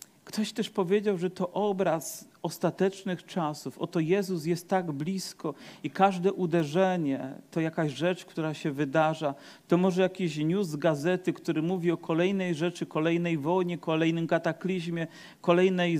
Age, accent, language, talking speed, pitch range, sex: 40-59, native, Polish, 145 wpm, 155-185 Hz, male